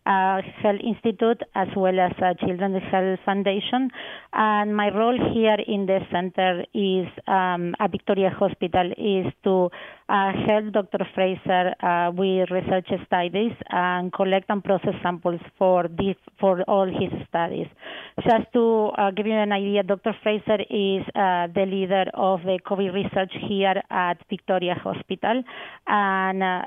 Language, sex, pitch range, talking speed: English, female, 180-200 Hz, 145 wpm